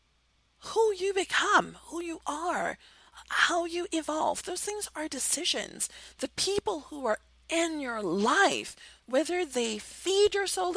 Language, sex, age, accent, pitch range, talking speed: English, female, 40-59, American, 215-340 Hz, 140 wpm